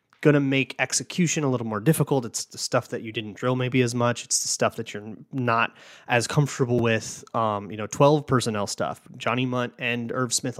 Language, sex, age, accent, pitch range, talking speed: English, male, 30-49, American, 115-135 Hz, 215 wpm